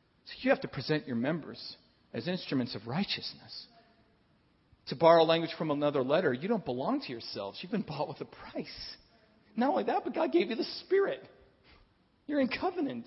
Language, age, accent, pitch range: English, 40-59, American, 125-195 Hz